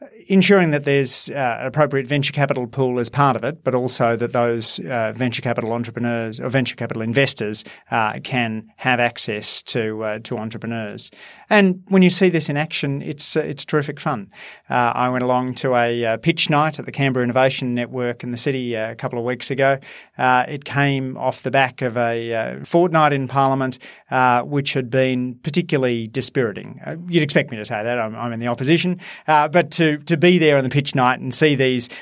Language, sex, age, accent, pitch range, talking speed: English, male, 30-49, Australian, 120-140 Hz, 205 wpm